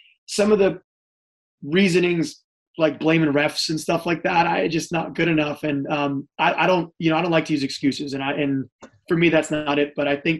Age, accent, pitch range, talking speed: 20-39, American, 140-160 Hz, 230 wpm